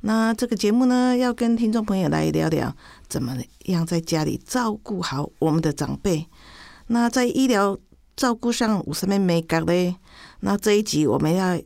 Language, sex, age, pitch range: Chinese, female, 50-69, 155-210 Hz